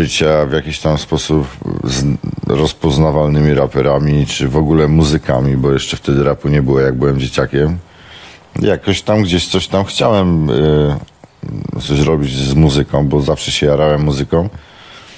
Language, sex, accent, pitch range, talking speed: Polish, male, native, 75-95 Hz, 140 wpm